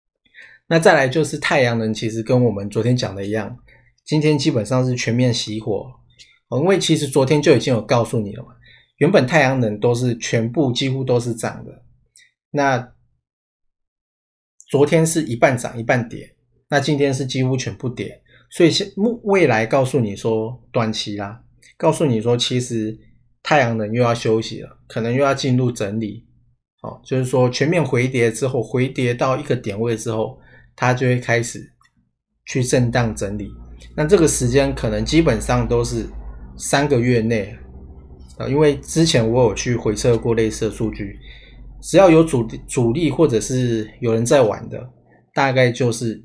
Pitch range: 110-130 Hz